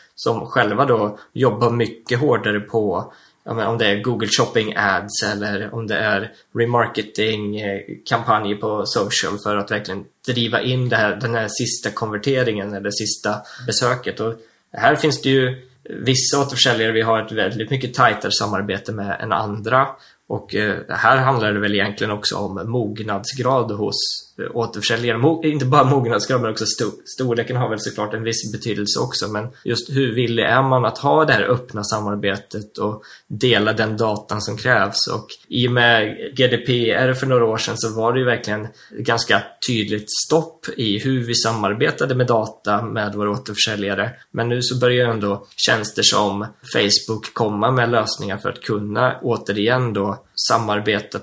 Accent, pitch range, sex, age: native, 105-125 Hz, male, 20-39